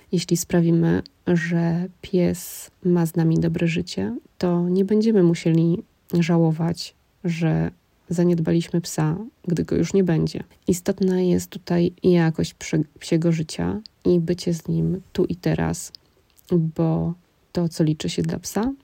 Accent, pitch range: native, 155-180 Hz